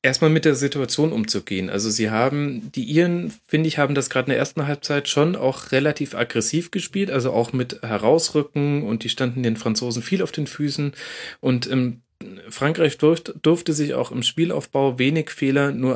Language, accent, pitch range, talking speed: German, German, 115-145 Hz, 175 wpm